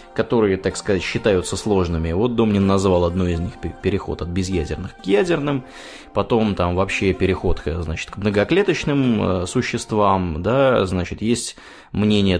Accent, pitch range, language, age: native, 85-105 Hz, Russian, 20-39